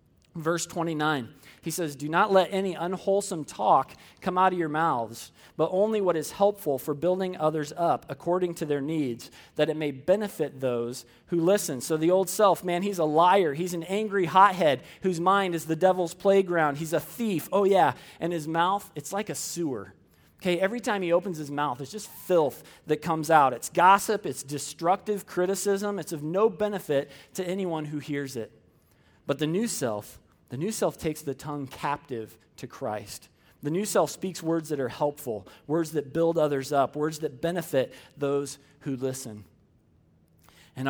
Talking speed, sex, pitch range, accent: 185 wpm, male, 135-180 Hz, American